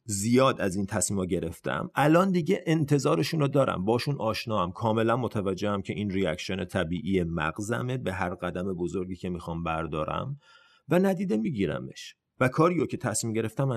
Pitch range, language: 100-155 Hz, Persian